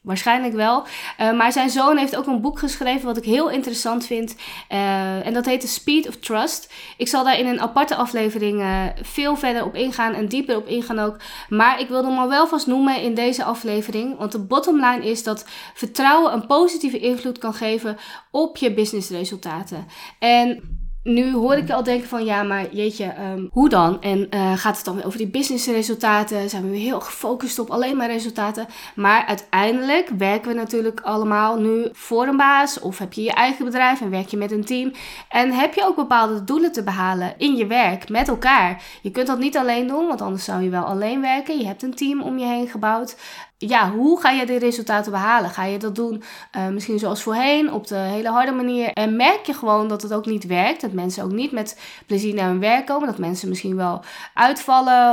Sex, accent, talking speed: female, Dutch, 215 wpm